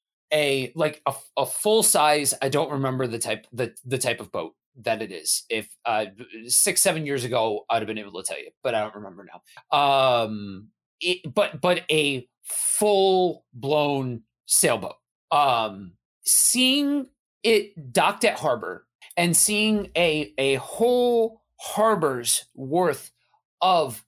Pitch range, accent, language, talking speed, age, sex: 135-210 Hz, American, English, 145 wpm, 30-49, male